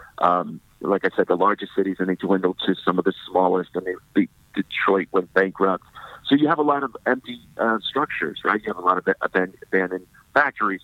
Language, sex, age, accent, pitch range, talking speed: English, male, 50-69, American, 95-115 Hz, 200 wpm